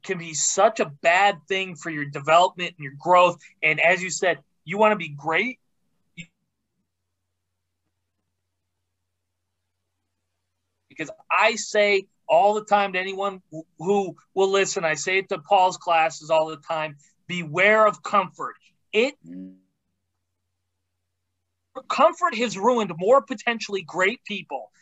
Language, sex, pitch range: English, male, 155-210 Hz